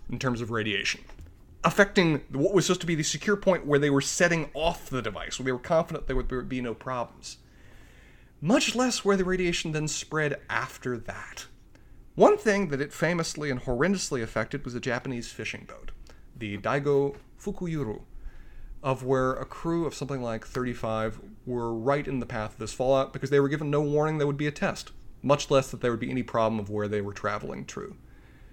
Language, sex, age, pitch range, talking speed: English, male, 30-49, 110-145 Hz, 200 wpm